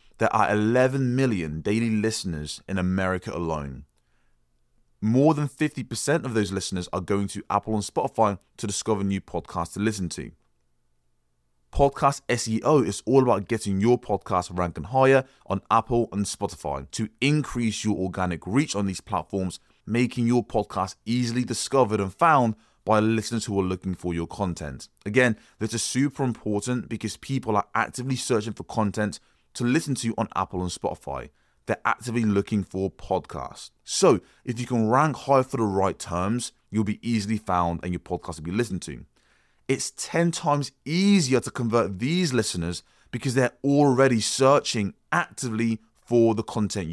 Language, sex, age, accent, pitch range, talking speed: English, male, 20-39, British, 95-125 Hz, 160 wpm